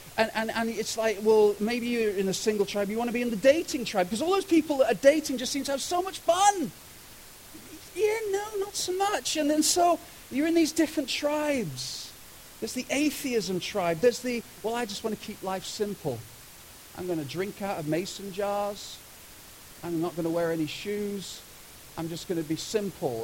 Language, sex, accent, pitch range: English, male, British, 160-230 Hz